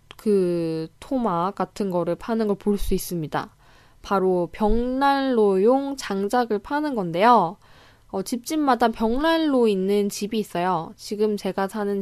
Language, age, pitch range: Korean, 10-29, 185-240 Hz